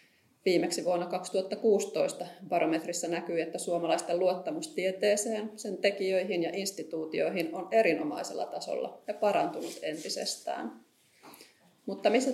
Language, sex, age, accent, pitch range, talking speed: Finnish, female, 30-49, native, 175-220 Hz, 100 wpm